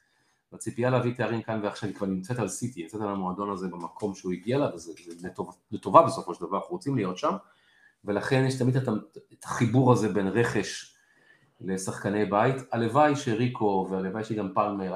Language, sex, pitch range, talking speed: Hebrew, male, 100-125 Hz, 175 wpm